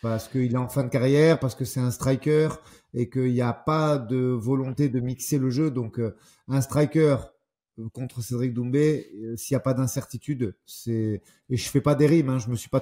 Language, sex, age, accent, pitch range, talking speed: French, male, 30-49, French, 120-150 Hz, 225 wpm